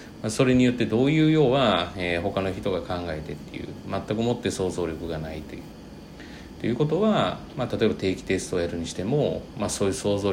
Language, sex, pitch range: Japanese, male, 85-120 Hz